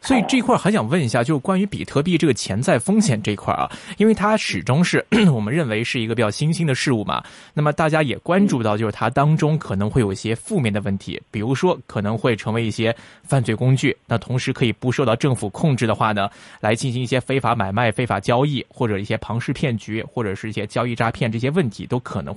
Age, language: 20-39, Chinese